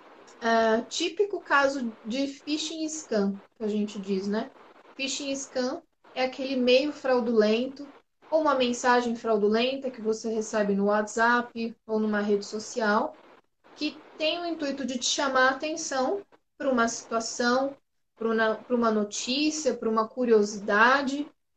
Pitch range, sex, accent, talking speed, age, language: 225-280 Hz, female, Brazilian, 135 wpm, 20-39, Portuguese